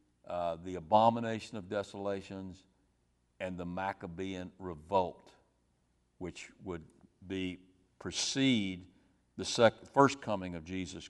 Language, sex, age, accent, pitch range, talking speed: English, male, 60-79, American, 90-110 Hz, 105 wpm